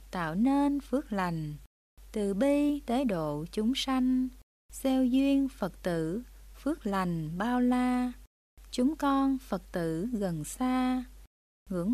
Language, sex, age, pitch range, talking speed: Vietnamese, female, 20-39, 180-265 Hz, 125 wpm